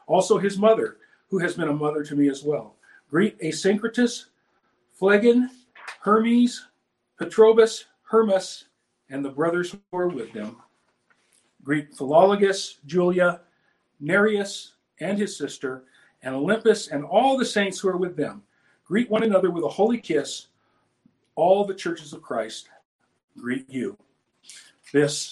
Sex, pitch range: male, 145-200 Hz